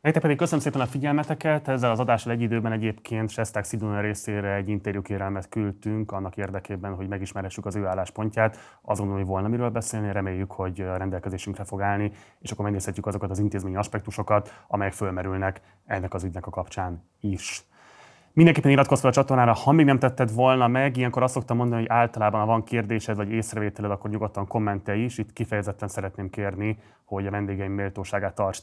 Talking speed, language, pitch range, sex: 180 wpm, Hungarian, 100-115 Hz, male